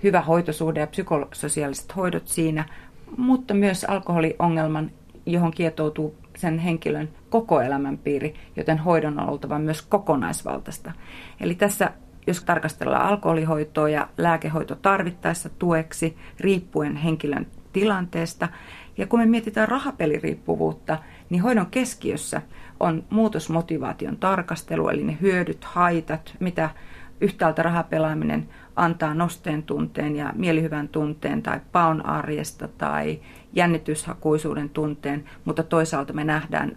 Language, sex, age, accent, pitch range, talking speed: Finnish, female, 30-49, native, 150-175 Hz, 110 wpm